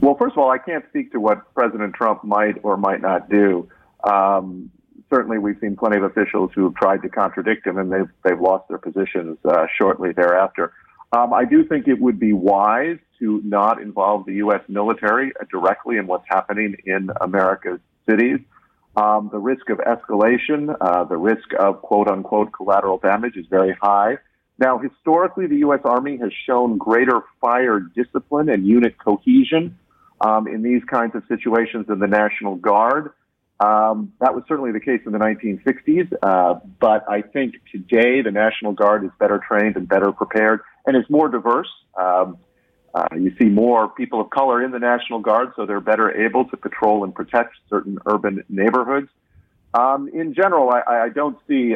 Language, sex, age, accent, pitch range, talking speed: English, male, 50-69, American, 100-125 Hz, 180 wpm